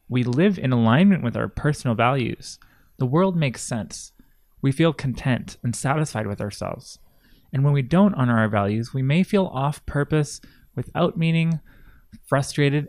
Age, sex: 20-39, male